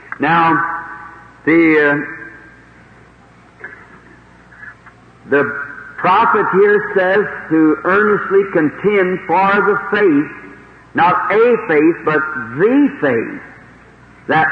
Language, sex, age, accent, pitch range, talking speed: English, male, 60-79, American, 155-200 Hz, 85 wpm